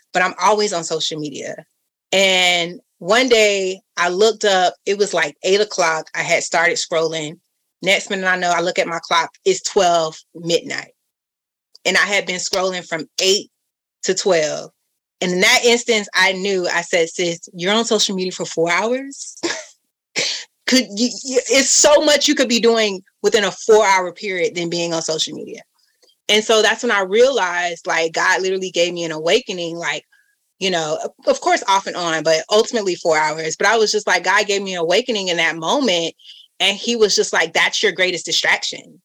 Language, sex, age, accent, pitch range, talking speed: English, female, 30-49, American, 170-230 Hz, 190 wpm